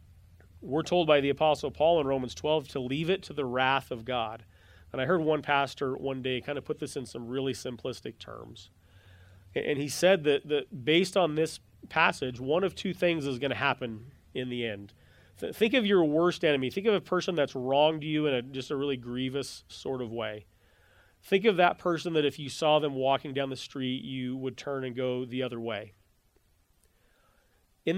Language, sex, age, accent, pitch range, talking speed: English, male, 30-49, American, 115-150 Hz, 205 wpm